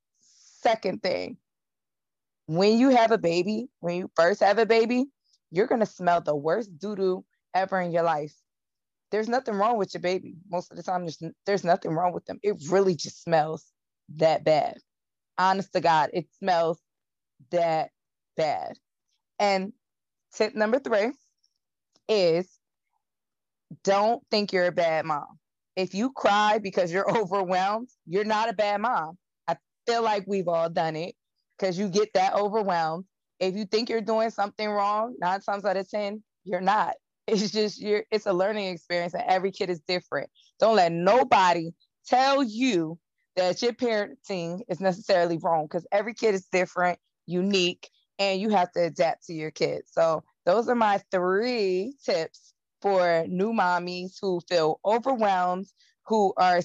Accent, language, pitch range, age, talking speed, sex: American, English, 175-210 Hz, 20-39, 160 wpm, female